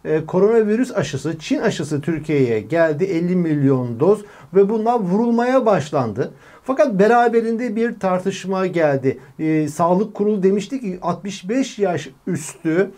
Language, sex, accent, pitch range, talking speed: Turkish, male, native, 170-235 Hz, 120 wpm